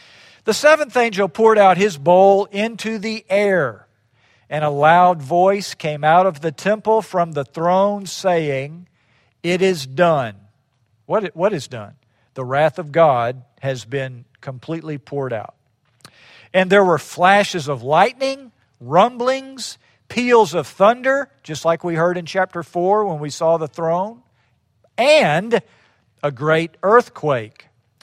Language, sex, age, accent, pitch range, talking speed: English, male, 50-69, American, 130-185 Hz, 140 wpm